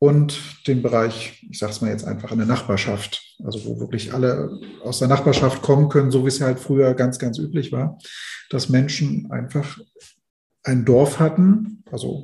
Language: German